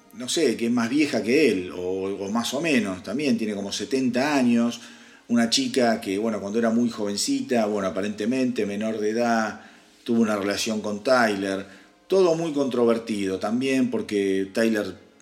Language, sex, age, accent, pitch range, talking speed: Spanish, male, 40-59, Argentinian, 105-140 Hz, 165 wpm